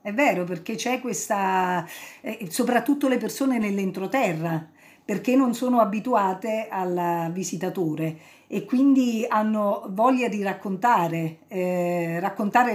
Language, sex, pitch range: Italian, female, 195-260 Hz